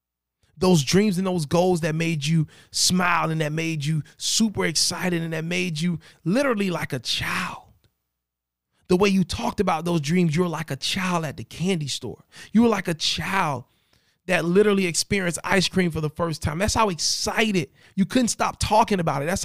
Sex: male